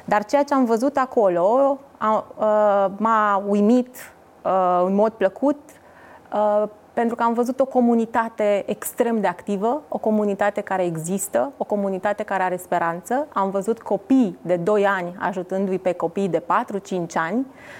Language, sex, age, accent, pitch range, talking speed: Romanian, female, 30-49, native, 185-235 Hz, 150 wpm